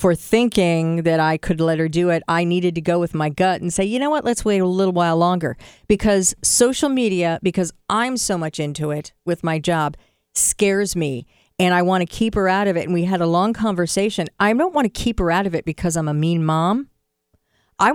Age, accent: 50-69, American